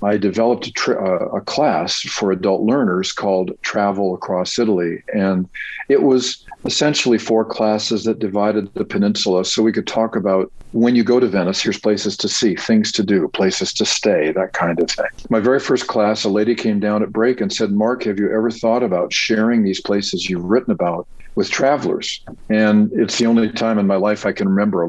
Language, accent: English, American